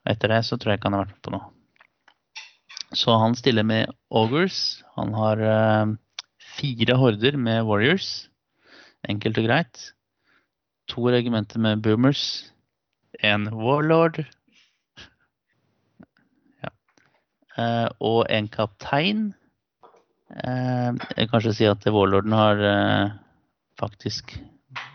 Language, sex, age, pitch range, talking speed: English, male, 30-49, 105-125 Hz, 105 wpm